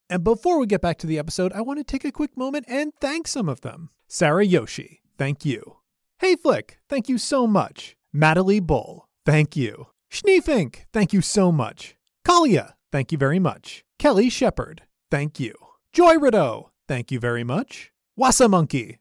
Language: English